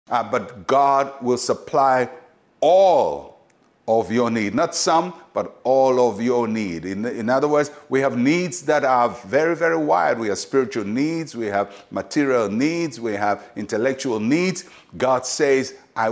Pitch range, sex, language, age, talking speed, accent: 125-170 Hz, male, English, 60-79, 160 wpm, Nigerian